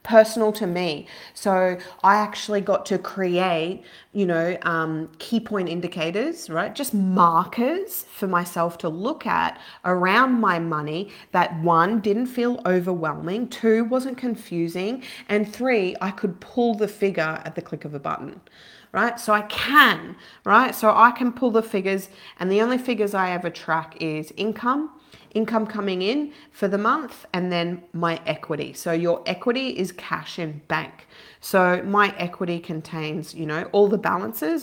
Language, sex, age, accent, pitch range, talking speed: English, female, 40-59, Australian, 170-220 Hz, 160 wpm